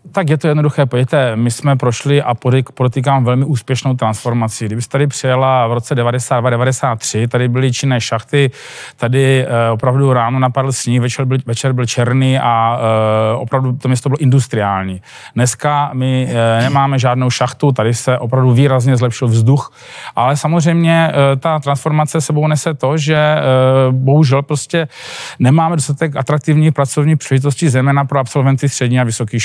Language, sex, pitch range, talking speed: Czech, male, 125-145 Hz, 145 wpm